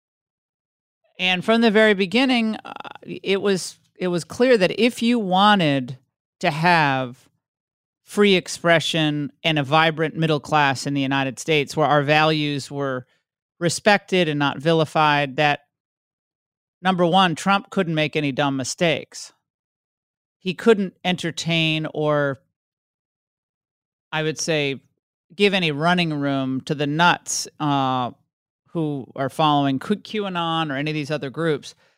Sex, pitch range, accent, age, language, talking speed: male, 145-185 Hz, American, 40-59, English, 135 wpm